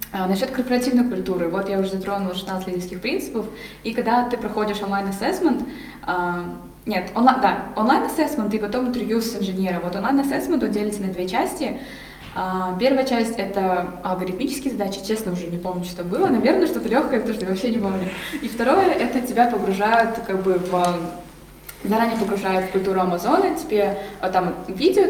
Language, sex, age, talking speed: Russian, female, 20-39, 165 wpm